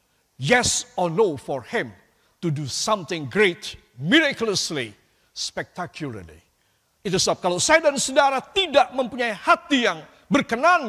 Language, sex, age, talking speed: Indonesian, male, 50-69, 120 wpm